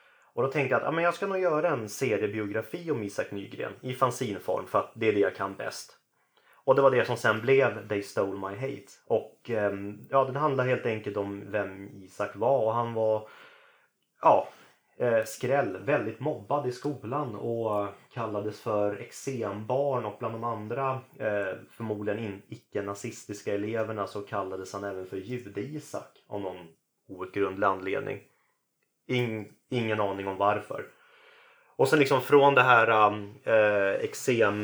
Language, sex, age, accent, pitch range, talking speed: Swedish, male, 30-49, native, 100-130 Hz, 160 wpm